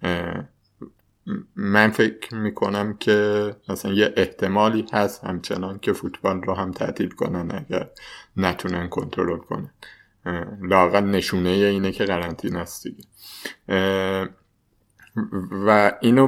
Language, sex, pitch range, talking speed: Persian, male, 95-110 Hz, 95 wpm